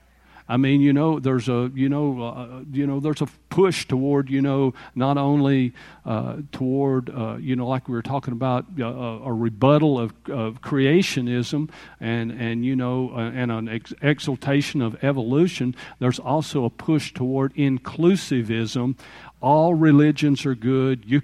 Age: 50-69